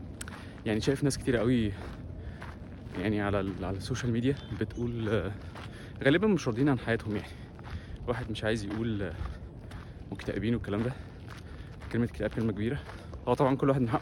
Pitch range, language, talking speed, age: 100-125 Hz, Arabic, 140 wpm, 20-39